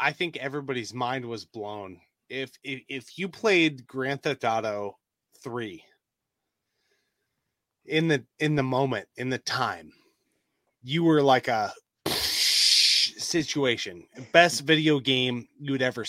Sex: male